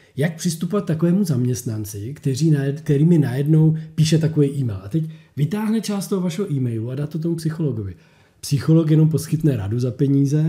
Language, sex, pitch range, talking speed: Czech, male, 130-160 Hz, 165 wpm